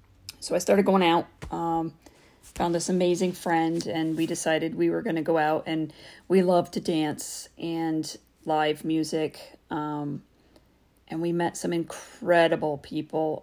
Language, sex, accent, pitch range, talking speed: English, female, American, 145-170 Hz, 150 wpm